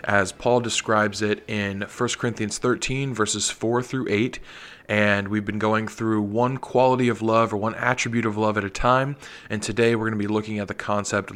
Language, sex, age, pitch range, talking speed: English, male, 20-39, 105-115 Hz, 205 wpm